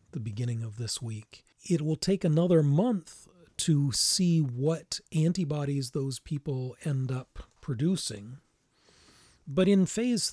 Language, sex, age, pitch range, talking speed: English, male, 40-59, 125-165 Hz, 130 wpm